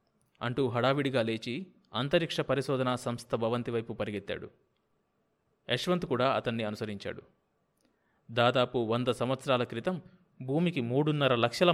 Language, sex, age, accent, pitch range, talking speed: Telugu, male, 30-49, native, 115-145 Hz, 100 wpm